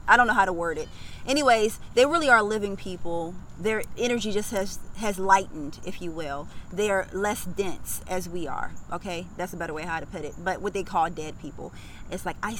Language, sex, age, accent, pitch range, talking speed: English, female, 20-39, American, 180-225 Hz, 225 wpm